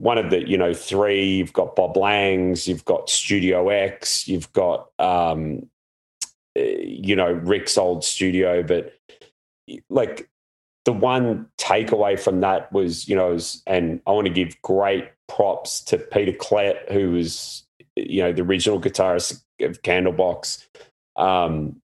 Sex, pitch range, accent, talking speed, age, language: male, 90-100 Hz, Australian, 145 wpm, 30-49, English